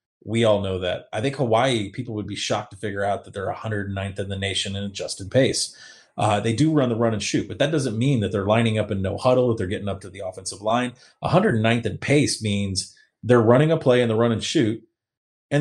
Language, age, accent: English, 30-49, American